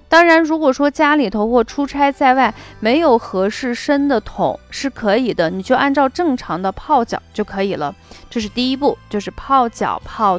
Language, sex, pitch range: Chinese, female, 205-275 Hz